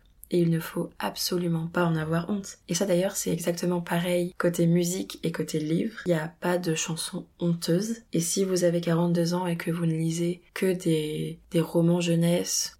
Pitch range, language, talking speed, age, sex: 165-180 Hz, French, 200 wpm, 20-39, female